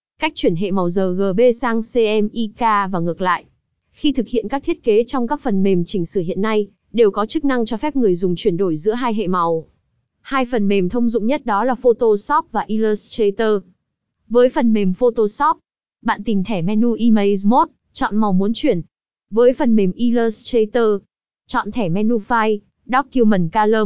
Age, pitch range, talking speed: 20-39, 200-250 Hz, 185 wpm